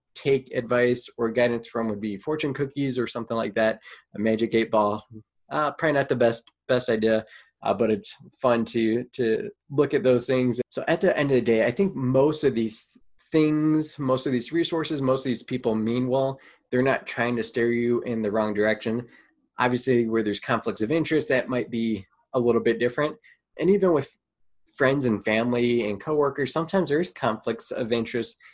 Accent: American